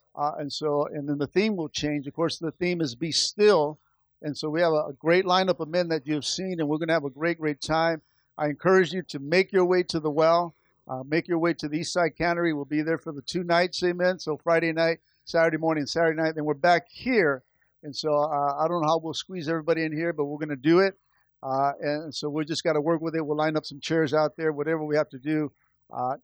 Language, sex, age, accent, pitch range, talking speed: English, male, 50-69, American, 150-175 Hz, 265 wpm